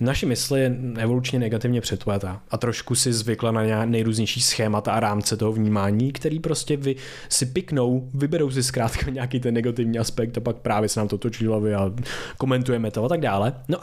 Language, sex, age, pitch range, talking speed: Czech, male, 20-39, 110-135 Hz, 195 wpm